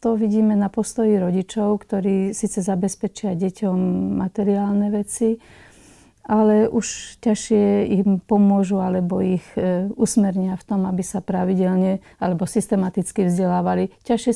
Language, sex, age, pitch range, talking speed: Slovak, female, 40-59, 190-220 Hz, 120 wpm